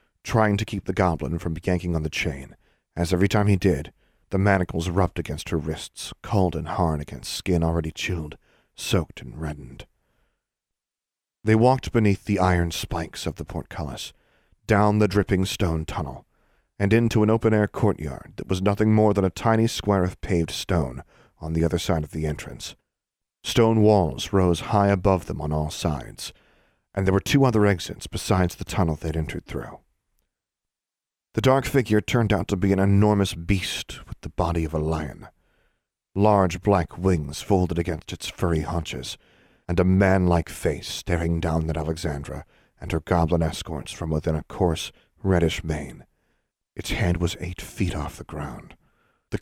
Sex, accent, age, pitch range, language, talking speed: male, American, 40-59, 80-100 Hz, English, 170 wpm